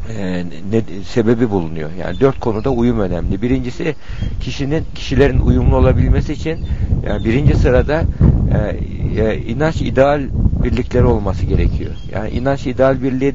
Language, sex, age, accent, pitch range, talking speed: Turkish, male, 60-79, native, 100-130 Hz, 135 wpm